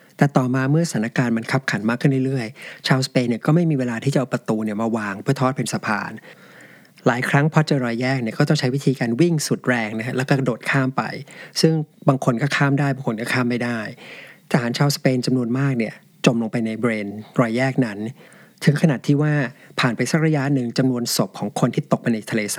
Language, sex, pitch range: Thai, male, 120-145 Hz